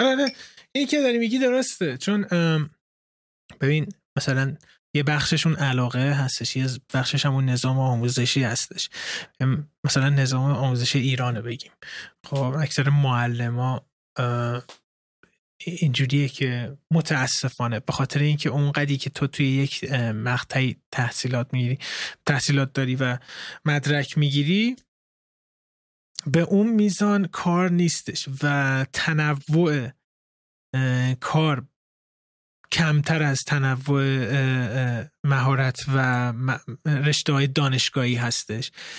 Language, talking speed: Persian, 105 wpm